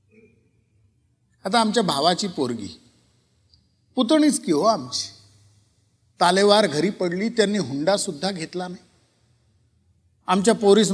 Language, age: Marathi, 50-69